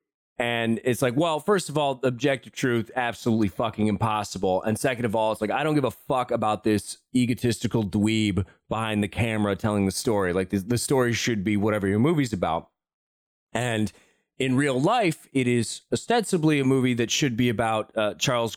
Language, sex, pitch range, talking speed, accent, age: English, male, 105-130 Hz, 185 wpm, American, 30-49